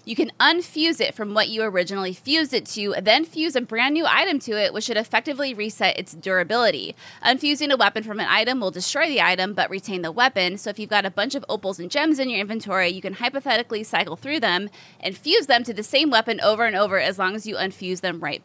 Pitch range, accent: 185-245 Hz, American